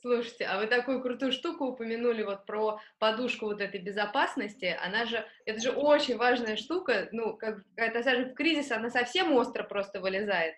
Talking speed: 175 wpm